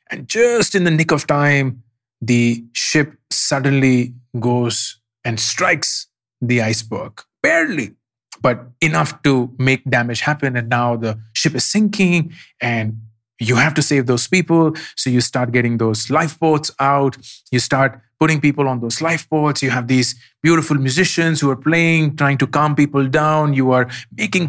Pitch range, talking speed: 120-150 Hz, 160 wpm